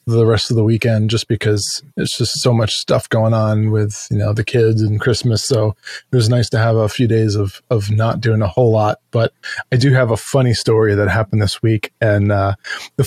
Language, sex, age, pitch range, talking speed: English, male, 20-39, 110-140 Hz, 235 wpm